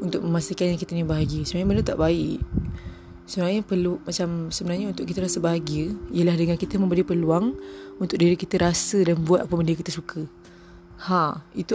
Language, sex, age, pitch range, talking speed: Malay, female, 20-39, 135-185 Hz, 180 wpm